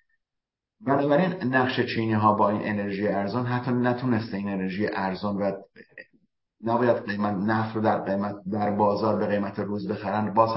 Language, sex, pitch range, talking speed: English, male, 105-120 Hz, 150 wpm